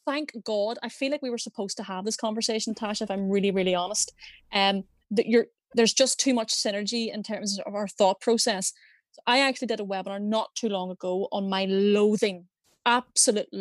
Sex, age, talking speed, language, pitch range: female, 20-39, 200 wpm, English, 200-245 Hz